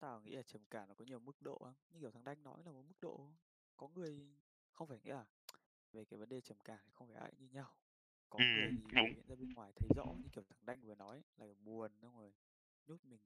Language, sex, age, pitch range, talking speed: Vietnamese, male, 20-39, 105-145 Hz, 265 wpm